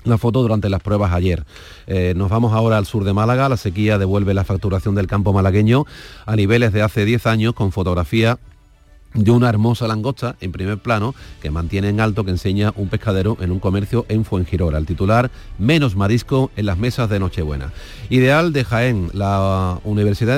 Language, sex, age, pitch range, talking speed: Spanish, male, 40-59, 95-115 Hz, 190 wpm